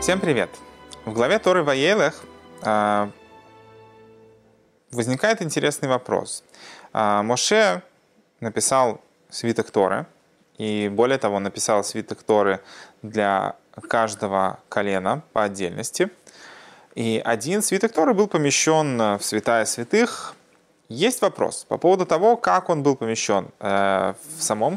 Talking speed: 110 wpm